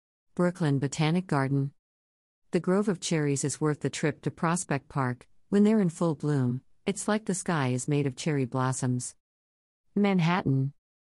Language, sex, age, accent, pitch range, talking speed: English, female, 50-69, American, 130-160 Hz, 155 wpm